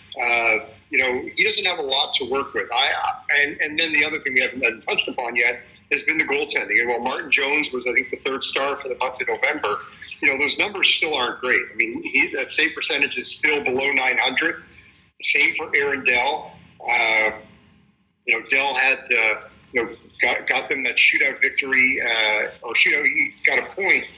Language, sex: English, male